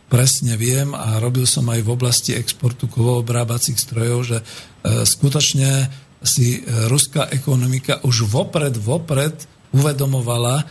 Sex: male